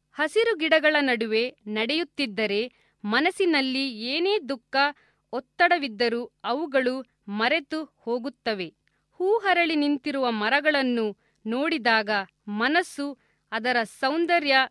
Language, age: Kannada, 40-59